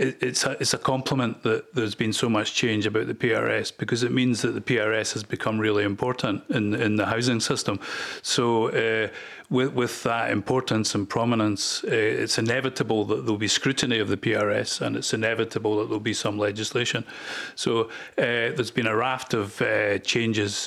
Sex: male